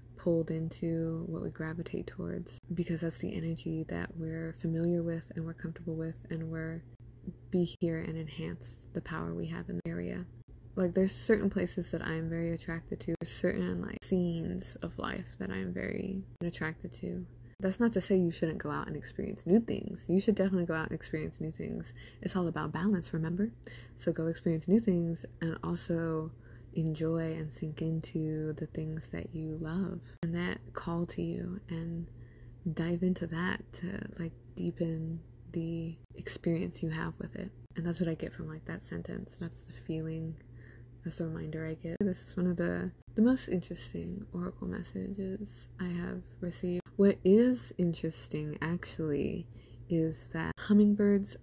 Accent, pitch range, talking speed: American, 145-175 Hz, 175 wpm